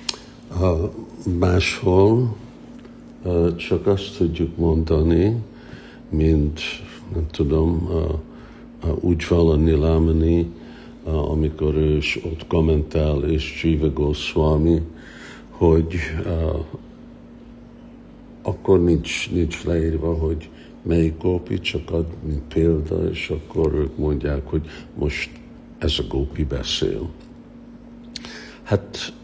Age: 60-79